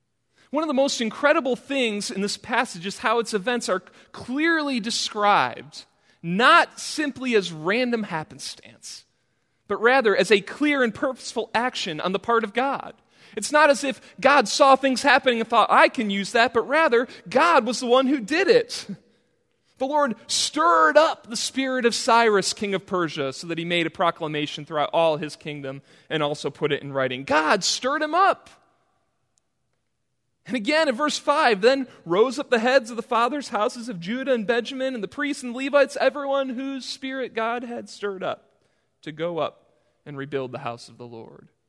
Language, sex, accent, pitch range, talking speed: English, male, American, 195-270 Hz, 185 wpm